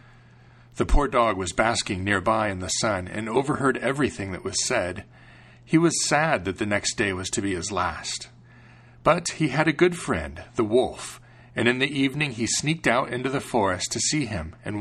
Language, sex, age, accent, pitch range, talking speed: English, male, 40-59, American, 100-125 Hz, 200 wpm